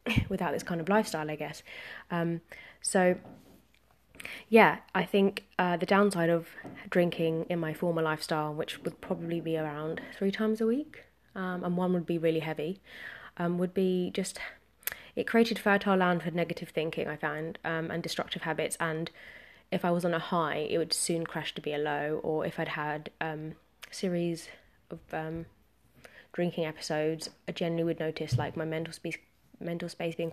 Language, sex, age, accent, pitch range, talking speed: English, female, 20-39, British, 155-175 Hz, 180 wpm